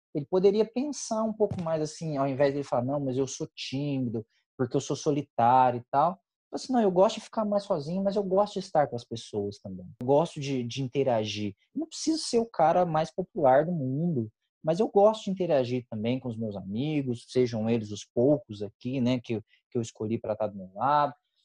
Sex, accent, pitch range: male, Brazilian, 125-185 Hz